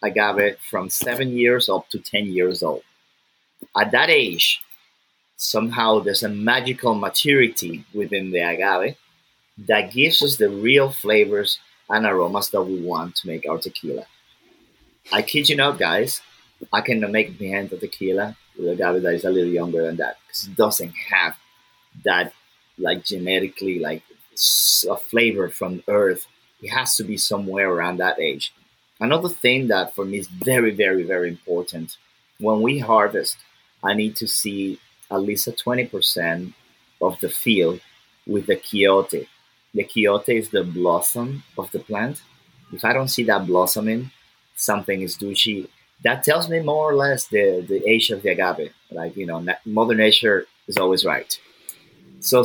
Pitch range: 95-125 Hz